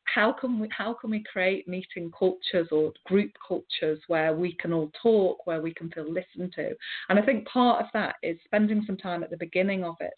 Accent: British